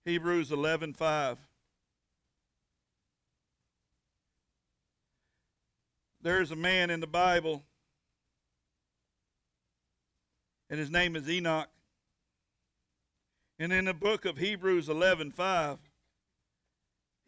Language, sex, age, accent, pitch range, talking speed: English, male, 60-79, American, 140-210 Hz, 70 wpm